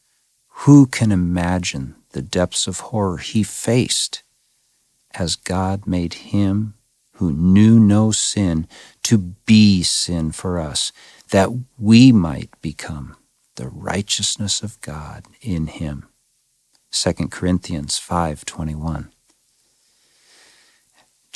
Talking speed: 100 wpm